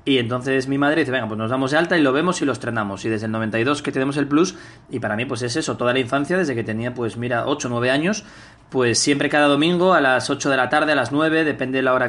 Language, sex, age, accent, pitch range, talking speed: Spanish, male, 20-39, Spanish, 125-155 Hz, 300 wpm